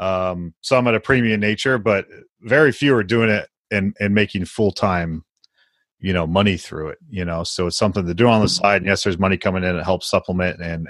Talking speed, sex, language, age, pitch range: 235 wpm, male, English, 30-49, 90-105 Hz